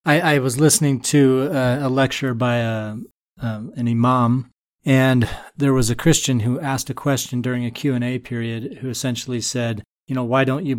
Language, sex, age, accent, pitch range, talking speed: English, male, 30-49, American, 120-140 Hz, 190 wpm